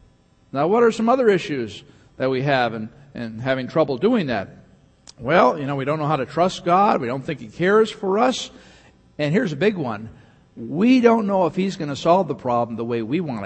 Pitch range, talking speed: 135-220 Hz, 225 wpm